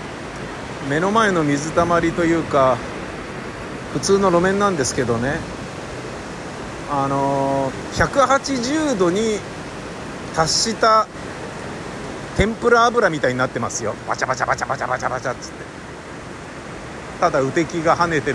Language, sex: Japanese, male